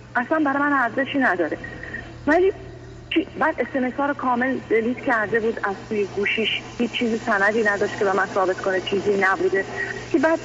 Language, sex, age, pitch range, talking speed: Persian, female, 40-59, 195-265 Hz, 160 wpm